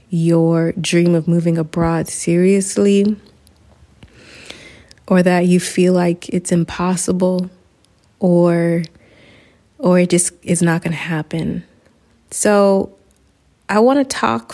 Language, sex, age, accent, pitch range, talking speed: English, female, 30-49, American, 170-205 Hz, 110 wpm